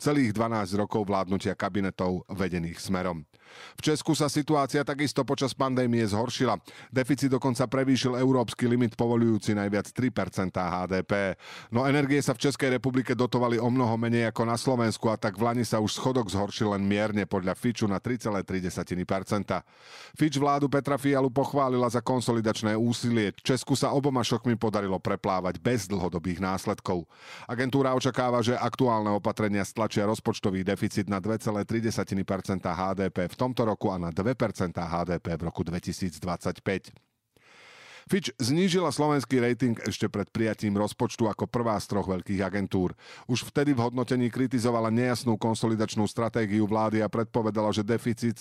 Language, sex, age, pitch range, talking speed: Slovak, male, 40-59, 100-125 Hz, 145 wpm